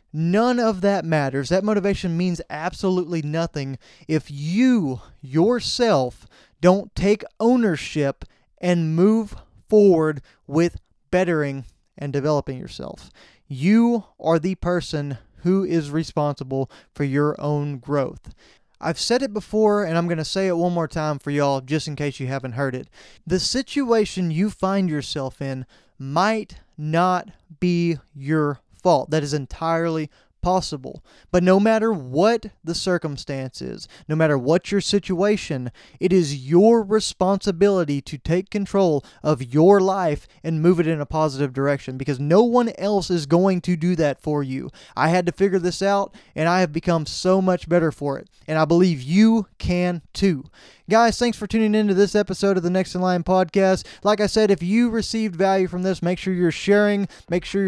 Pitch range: 150-195 Hz